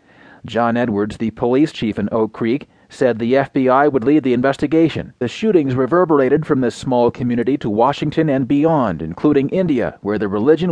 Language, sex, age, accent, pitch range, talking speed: English, male, 40-59, American, 120-165 Hz, 175 wpm